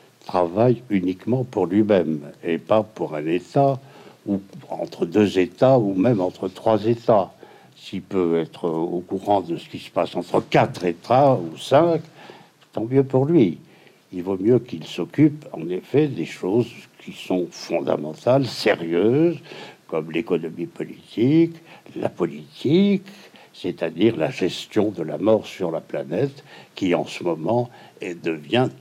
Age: 60-79